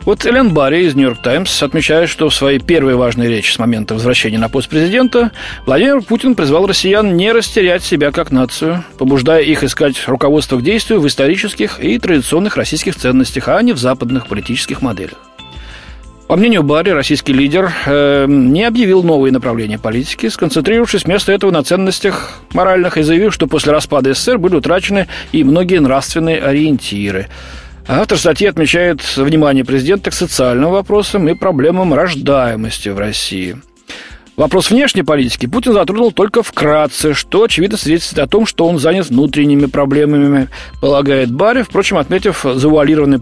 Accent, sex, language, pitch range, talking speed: native, male, Russian, 130-185 Hz, 150 wpm